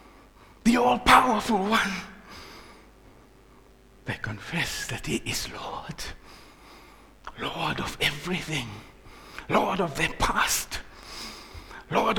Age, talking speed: 60-79, 85 wpm